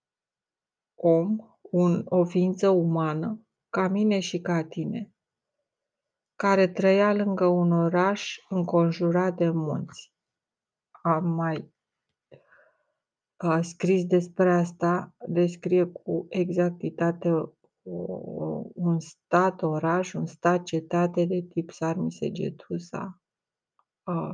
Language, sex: Romanian, female